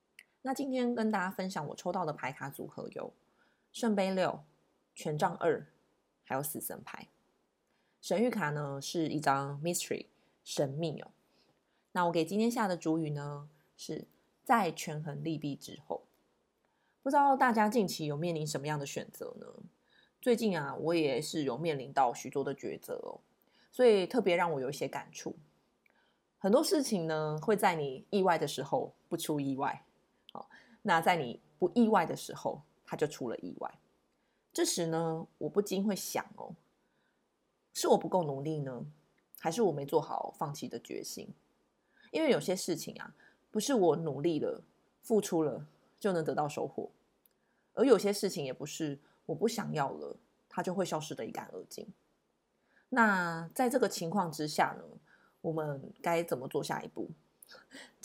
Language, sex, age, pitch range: Chinese, female, 20-39, 150-210 Hz